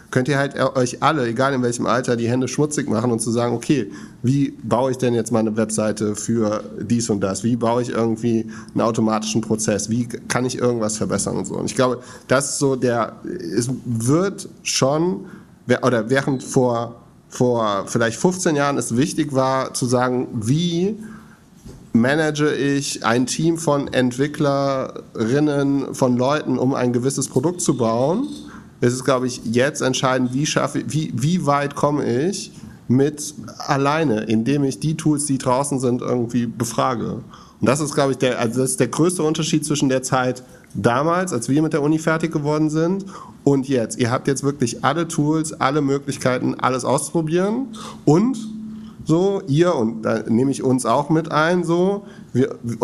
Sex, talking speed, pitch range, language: male, 175 wpm, 120-155 Hz, German